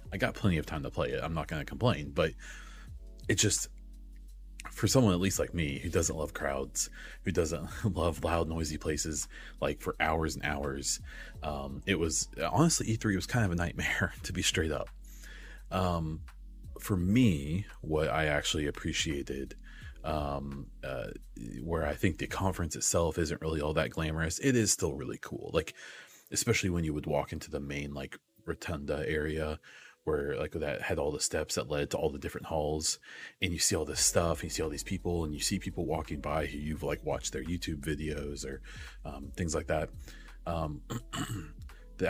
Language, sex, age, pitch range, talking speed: English, male, 30-49, 75-95 Hz, 190 wpm